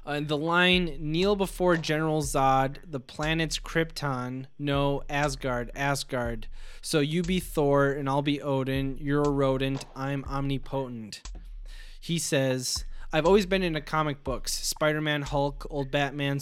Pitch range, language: 135-160 Hz, English